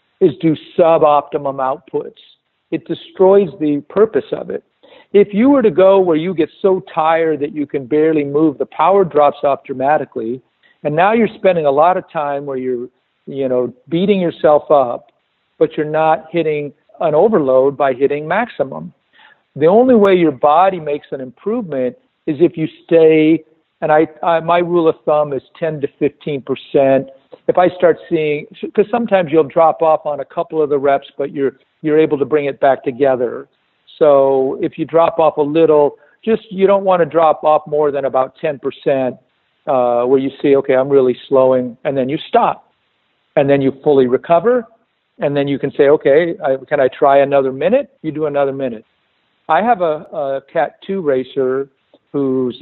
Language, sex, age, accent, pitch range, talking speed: English, male, 50-69, American, 135-170 Hz, 185 wpm